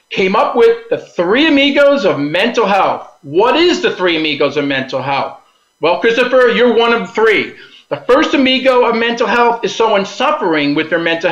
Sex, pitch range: male, 180-270 Hz